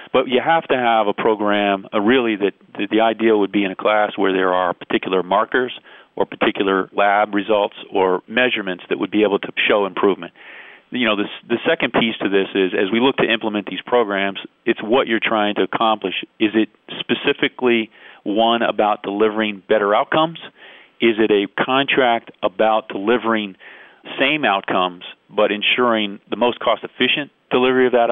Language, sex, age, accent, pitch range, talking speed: English, male, 40-59, American, 100-115 Hz, 175 wpm